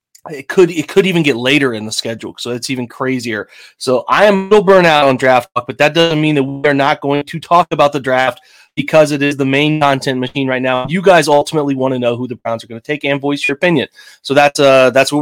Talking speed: 270 wpm